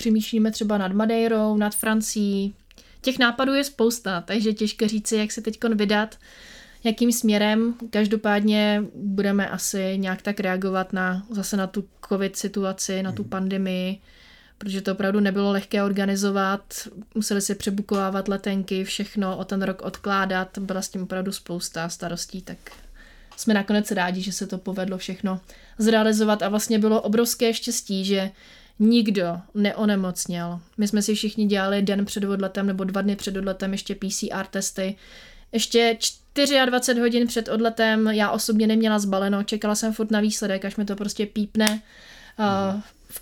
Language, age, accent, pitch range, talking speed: Czech, 30-49, native, 195-220 Hz, 155 wpm